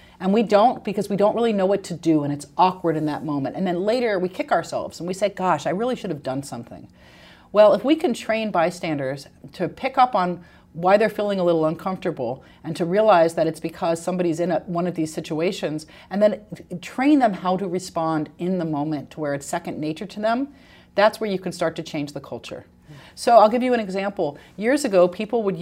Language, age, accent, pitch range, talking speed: English, 40-59, American, 165-225 Hz, 225 wpm